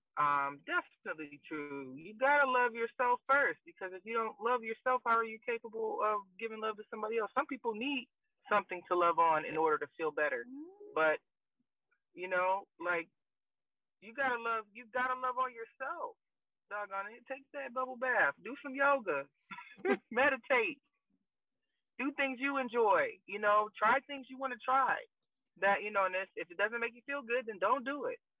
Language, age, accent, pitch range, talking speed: English, 20-39, American, 165-255 Hz, 180 wpm